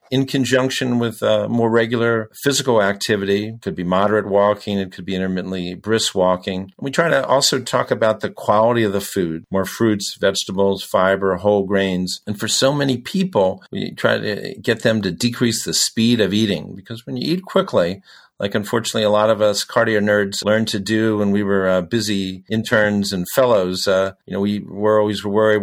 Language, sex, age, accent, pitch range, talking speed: English, male, 50-69, American, 95-115 Hz, 195 wpm